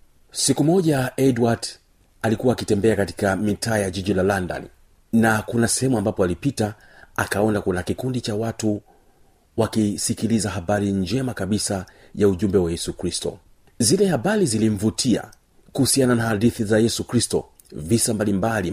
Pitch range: 100-125 Hz